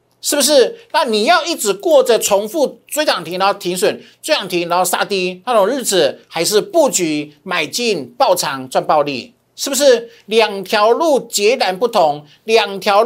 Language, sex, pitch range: Chinese, male, 155-240 Hz